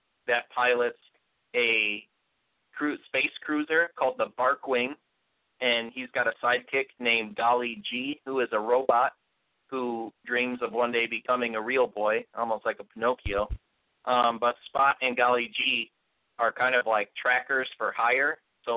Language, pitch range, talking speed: English, 110-125 Hz, 155 wpm